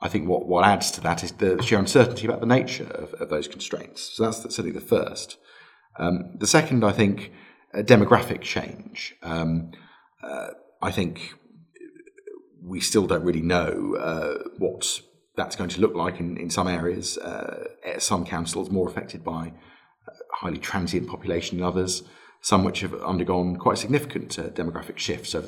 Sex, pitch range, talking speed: male, 90-125 Hz, 175 wpm